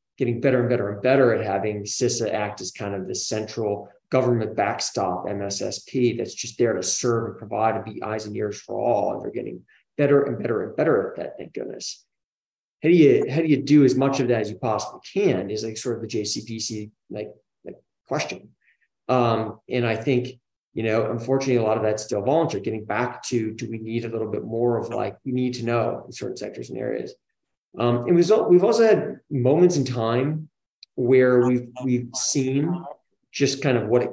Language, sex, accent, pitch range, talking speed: English, male, American, 110-130 Hz, 210 wpm